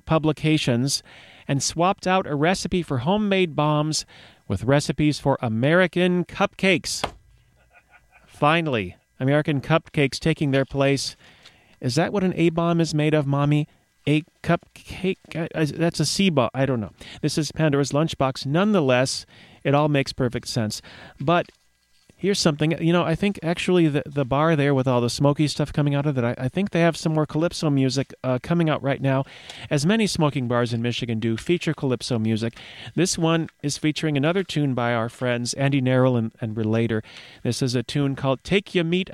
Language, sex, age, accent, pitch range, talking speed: English, male, 40-59, American, 130-170 Hz, 175 wpm